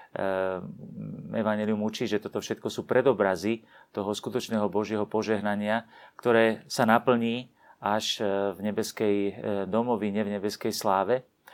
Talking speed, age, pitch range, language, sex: 110 wpm, 40-59, 105-125 Hz, Slovak, male